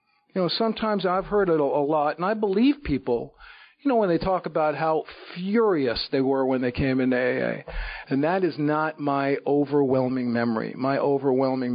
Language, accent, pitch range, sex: English, American, 130-165 Hz, male